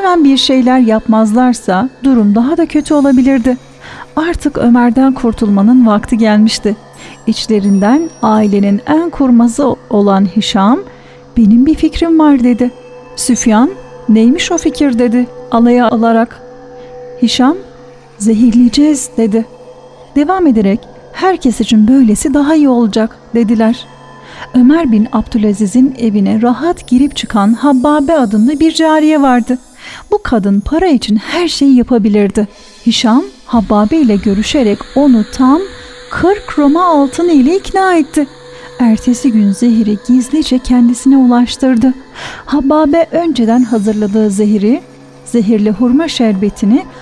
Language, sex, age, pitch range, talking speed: Turkish, female, 40-59, 225-280 Hz, 110 wpm